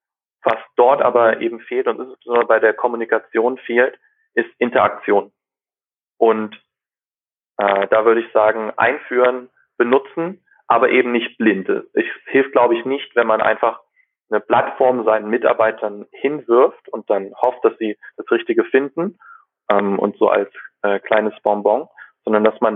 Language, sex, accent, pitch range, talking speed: German, male, German, 110-135 Hz, 150 wpm